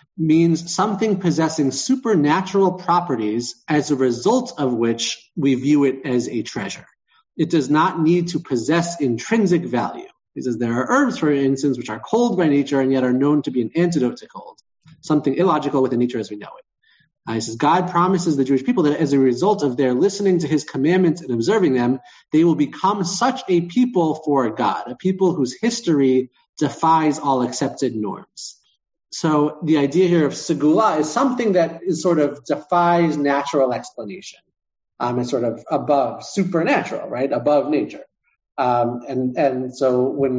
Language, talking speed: English, 180 wpm